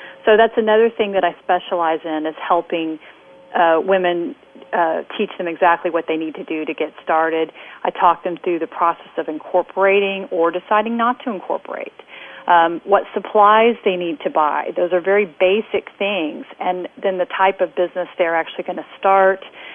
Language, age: English, 40-59